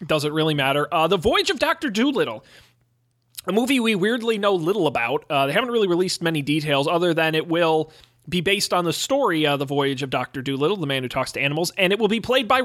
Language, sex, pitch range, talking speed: English, male, 140-195 Hz, 240 wpm